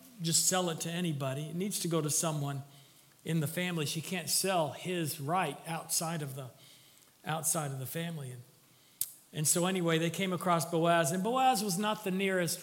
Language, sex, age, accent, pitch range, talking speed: English, male, 50-69, American, 145-190 Hz, 190 wpm